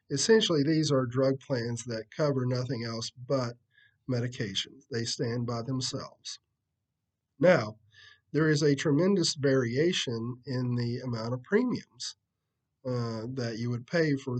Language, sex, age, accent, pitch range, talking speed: English, male, 40-59, American, 120-150 Hz, 135 wpm